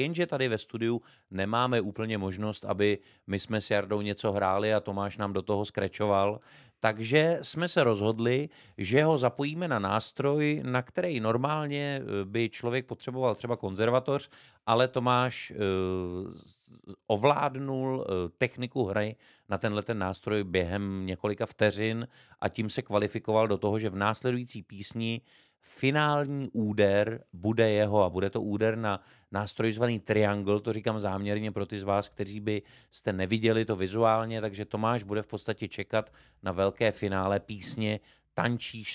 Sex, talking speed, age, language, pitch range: male, 145 wpm, 30-49, Czech, 100-115 Hz